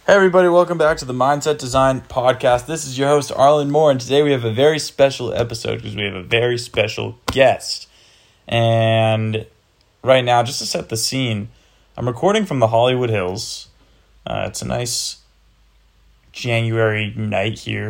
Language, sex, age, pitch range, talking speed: English, male, 20-39, 105-130 Hz, 170 wpm